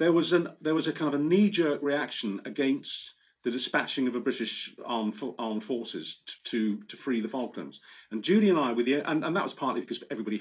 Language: English